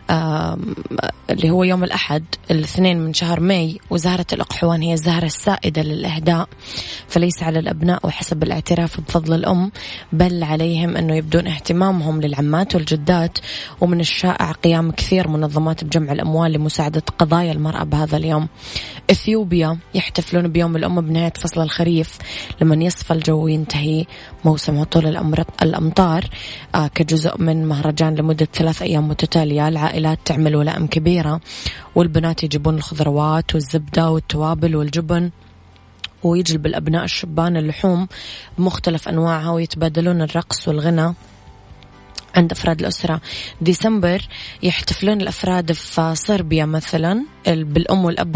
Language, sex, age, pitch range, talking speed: Arabic, female, 20-39, 155-175 Hz, 115 wpm